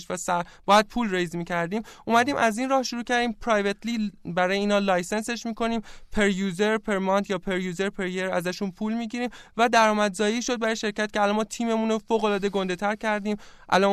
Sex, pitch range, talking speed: male, 180-225 Hz, 200 wpm